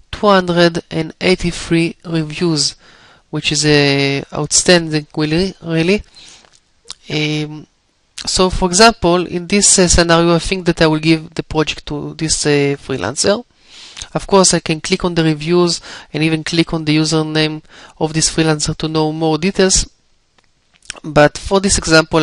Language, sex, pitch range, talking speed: English, male, 150-175 Hz, 155 wpm